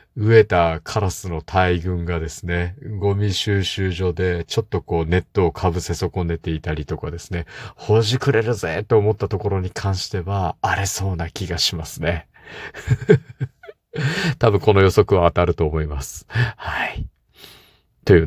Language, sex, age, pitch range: Japanese, male, 50-69, 85-110 Hz